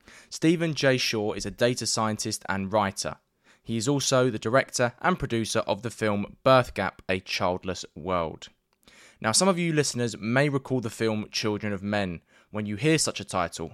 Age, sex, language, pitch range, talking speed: 20-39, male, English, 100-130 Hz, 185 wpm